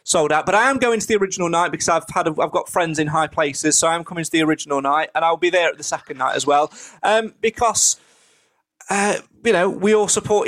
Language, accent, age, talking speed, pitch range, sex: English, British, 30-49, 260 wpm, 165-210 Hz, male